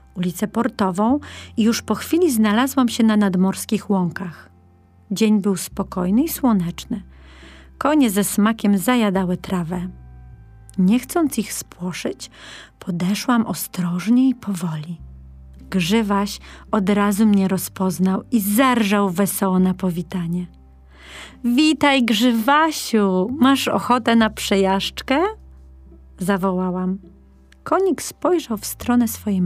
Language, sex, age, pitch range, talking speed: Polish, female, 40-59, 180-240 Hz, 105 wpm